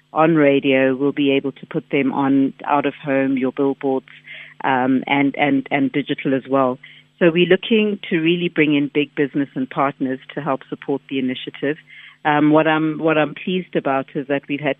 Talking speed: 195 wpm